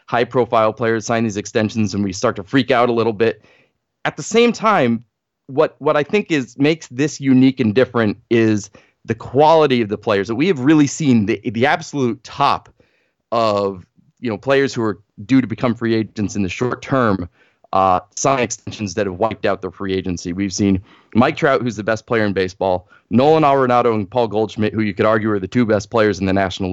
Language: English